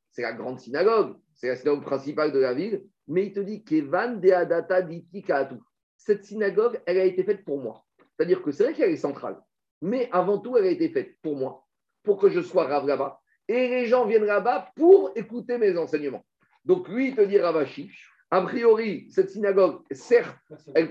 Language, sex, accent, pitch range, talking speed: French, male, French, 175-255 Hz, 185 wpm